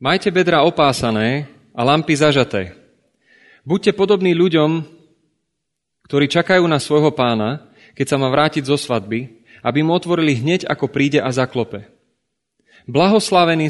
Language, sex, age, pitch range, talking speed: Slovak, male, 30-49, 125-160 Hz, 125 wpm